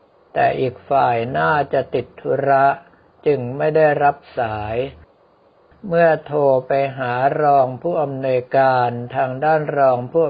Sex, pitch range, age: male, 130-150 Hz, 60-79